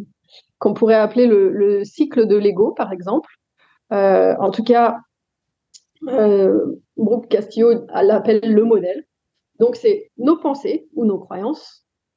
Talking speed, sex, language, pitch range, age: 140 wpm, female, French, 210-280 Hz, 30-49